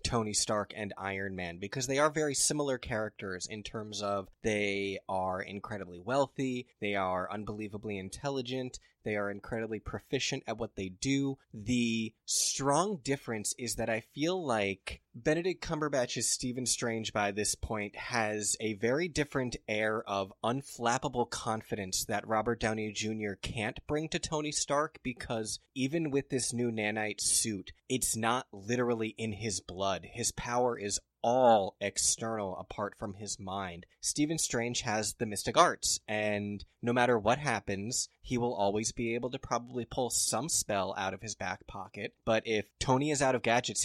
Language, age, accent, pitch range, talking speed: English, 20-39, American, 105-130 Hz, 160 wpm